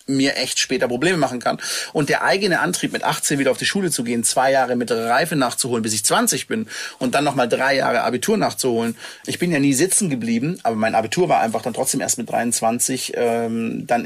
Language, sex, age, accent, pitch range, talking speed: German, male, 30-49, German, 120-150 Hz, 220 wpm